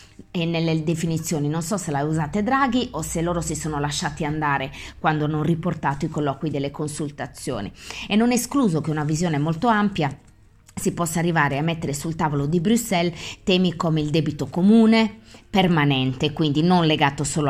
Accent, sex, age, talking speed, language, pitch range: native, female, 20-39, 170 wpm, Italian, 155-240 Hz